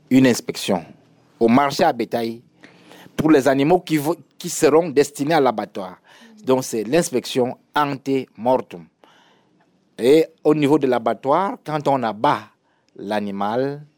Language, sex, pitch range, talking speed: French, male, 115-165 Hz, 120 wpm